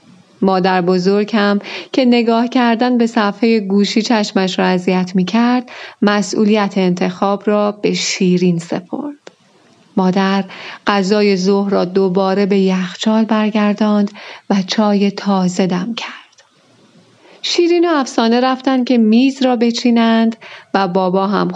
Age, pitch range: 30-49, 190-235 Hz